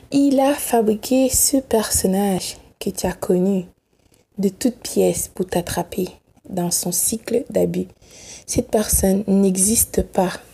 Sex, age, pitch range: female, 20-39, 180-220 Hz